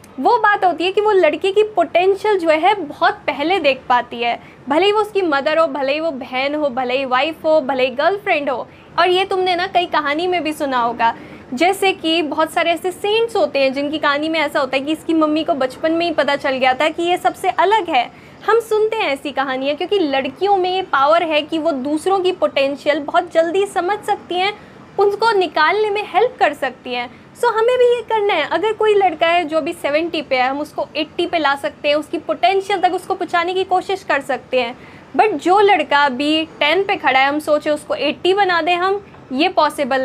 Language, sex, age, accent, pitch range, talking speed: Hindi, female, 20-39, native, 285-370 Hz, 230 wpm